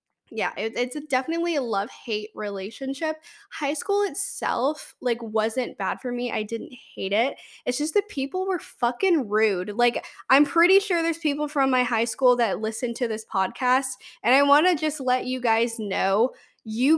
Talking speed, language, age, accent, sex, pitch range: 175 wpm, English, 10-29, American, female, 225-295 Hz